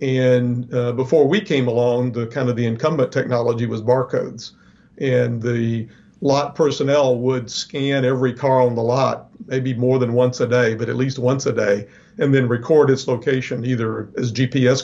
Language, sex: English, male